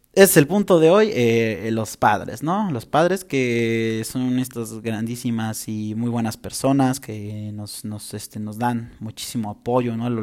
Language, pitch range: Spanish, 115-140 Hz